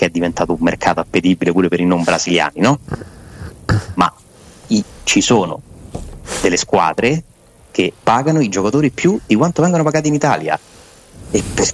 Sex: male